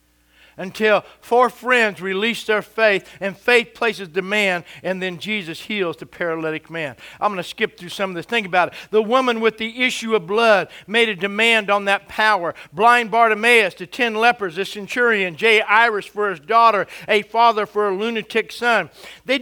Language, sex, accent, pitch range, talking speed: English, male, American, 190-240 Hz, 180 wpm